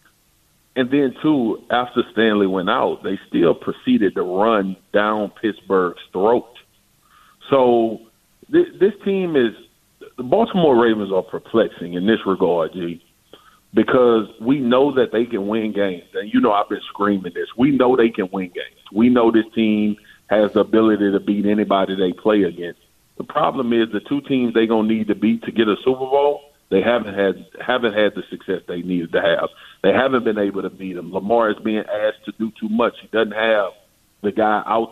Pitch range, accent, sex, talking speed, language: 105-130 Hz, American, male, 190 wpm, English